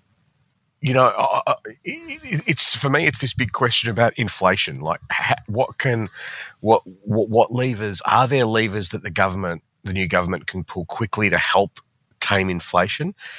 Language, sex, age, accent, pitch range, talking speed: English, male, 30-49, Australian, 90-120 Hz, 150 wpm